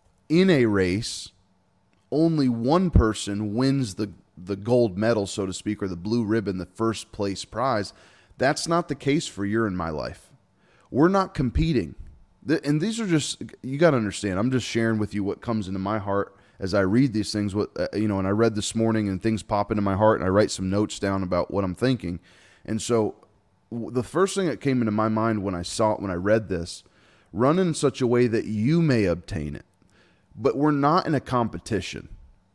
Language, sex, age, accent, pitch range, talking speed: English, male, 20-39, American, 100-125 Hz, 220 wpm